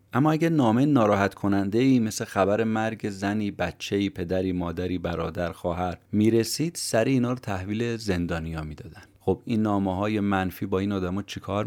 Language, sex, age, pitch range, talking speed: Persian, male, 30-49, 95-120 Hz, 165 wpm